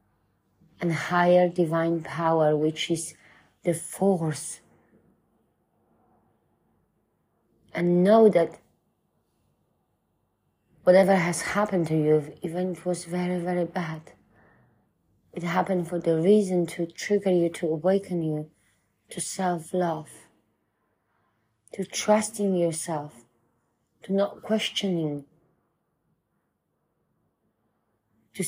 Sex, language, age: female, English, 30-49